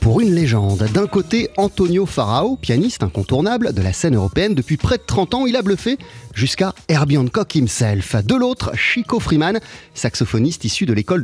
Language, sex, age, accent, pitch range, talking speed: French, male, 30-49, French, 125-200 Hz, 175 wpm